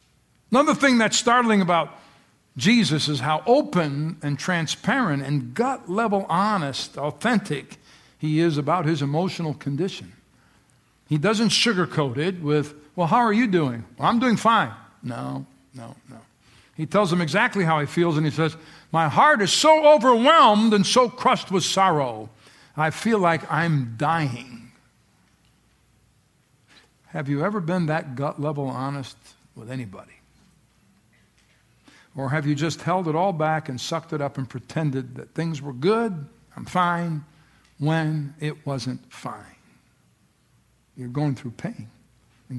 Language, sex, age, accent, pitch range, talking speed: English, male, 60-79, American, 140-185 Hz, 140 wpm